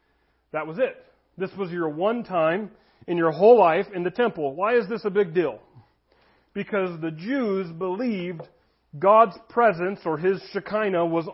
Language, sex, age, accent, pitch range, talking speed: English, male, 40-59, American, 175-235 Hz, 165 wpm